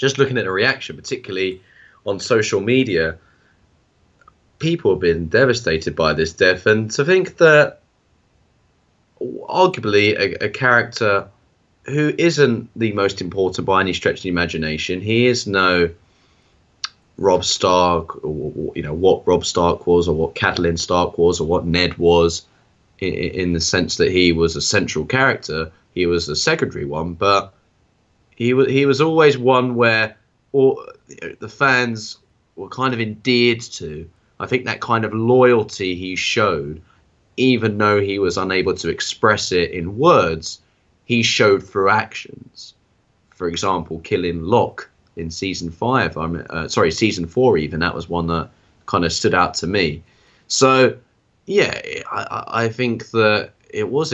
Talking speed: 150 wpm